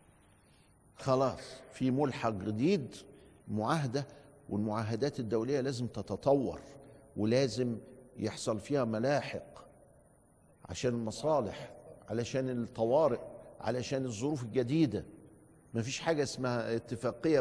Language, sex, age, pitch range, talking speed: Arabic, male, 50-69, 120-165 Hz, 85 wpm